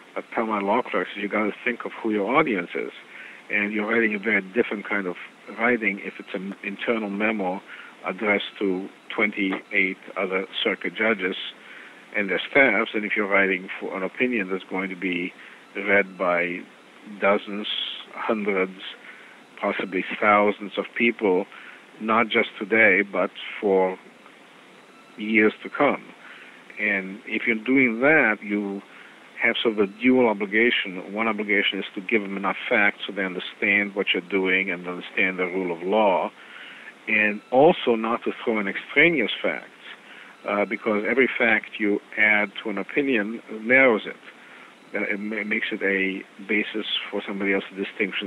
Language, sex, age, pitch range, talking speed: English, male, 50-69, 95-110 Hz, 155 wpm